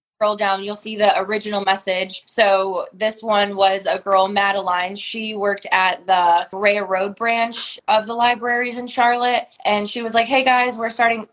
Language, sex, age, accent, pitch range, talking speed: English, female, 20-39, American, 190-220 Hz, 180 wpm